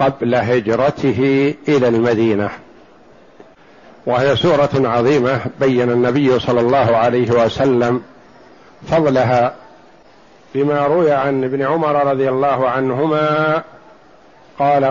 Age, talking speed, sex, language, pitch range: 50-69, 95 wpm, male, Arabic, 145-175 Hz